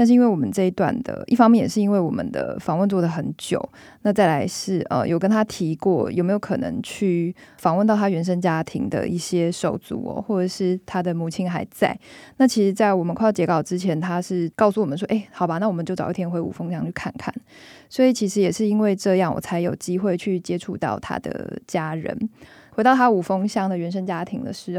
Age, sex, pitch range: 20-39, female, 175-215 Hz